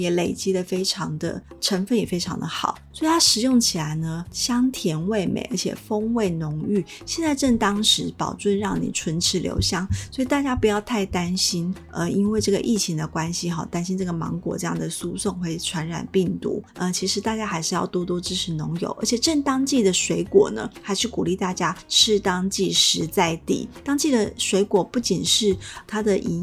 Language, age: Chinese, 30-49